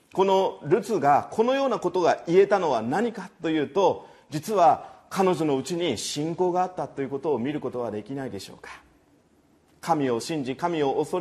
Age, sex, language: 40-59, male, Japanese